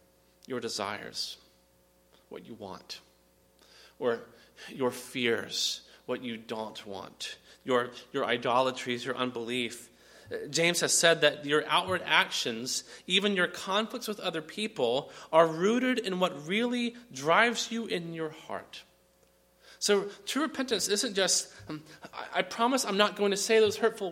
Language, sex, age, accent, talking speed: English, male, 30-49, American, 140 wpm